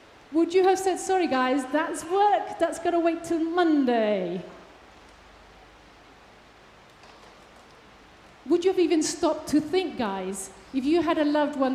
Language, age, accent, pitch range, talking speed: English, 30-49, British, 275-365 Hz, 145 wpm